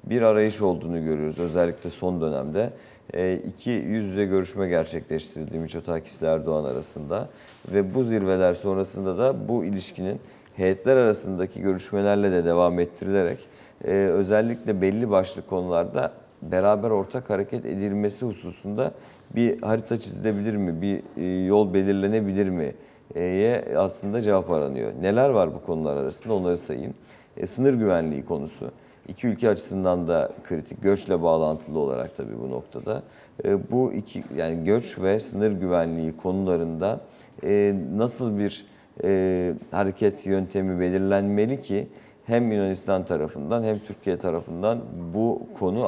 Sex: male